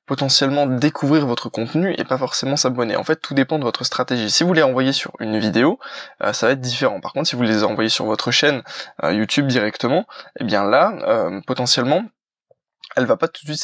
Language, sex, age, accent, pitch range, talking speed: French, male, 20-39, French, 120-140 Hz, 220 wpm